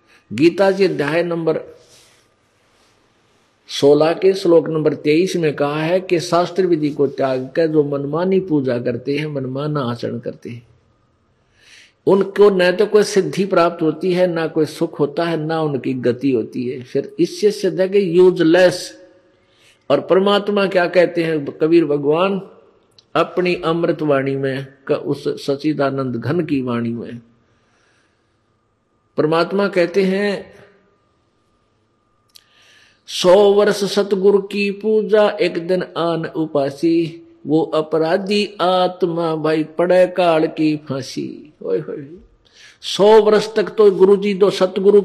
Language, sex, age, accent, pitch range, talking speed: Hindi, male, 50-69, native, 140-190 Hz, 125 wpm